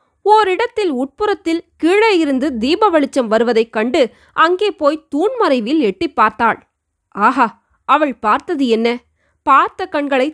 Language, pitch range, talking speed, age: Tamil, 245-340 Hz, 105 wpm, 20-39